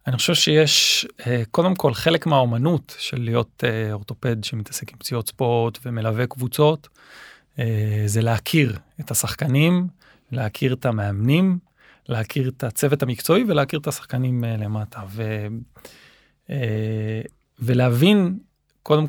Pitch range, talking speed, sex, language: 120-150 Hz, 105 wpm, male, Hebrew